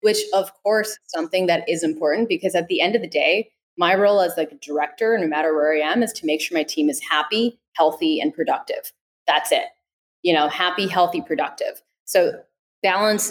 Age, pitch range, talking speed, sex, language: 20-39, 165-220 Hz, 200 wpm, female, English